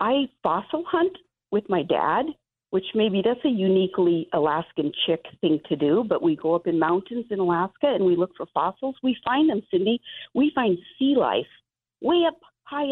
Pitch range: 175-255 Hz